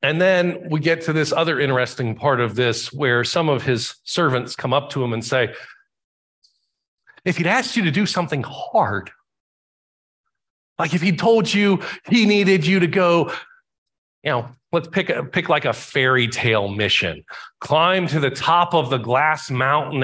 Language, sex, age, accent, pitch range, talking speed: English, male, 40-59, American, 120-165 Hz, 175 wpm